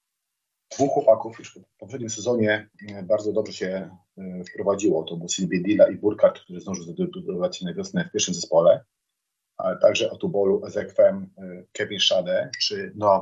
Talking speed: 155 wpm